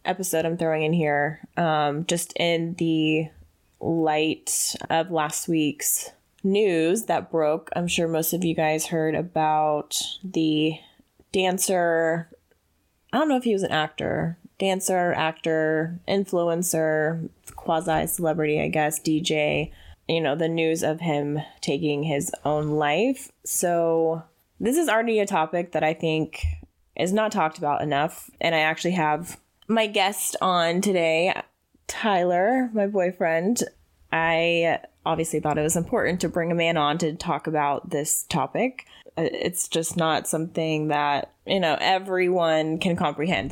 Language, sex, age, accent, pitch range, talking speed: English, female, 20-39, American, 150-170 Hz, 140 wpm